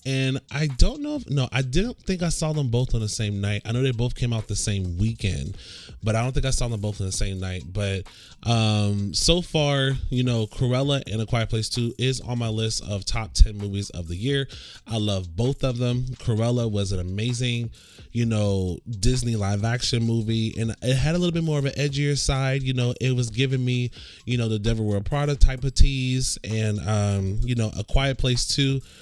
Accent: American